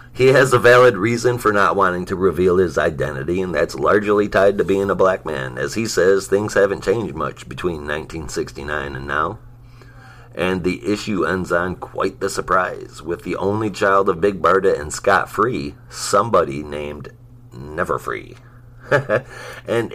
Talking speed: 165 wpm